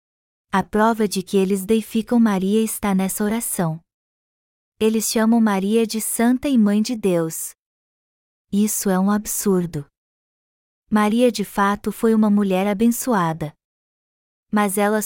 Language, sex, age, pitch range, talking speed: Portuguese, female, 20-39, 195-230 Hz, 130 wpm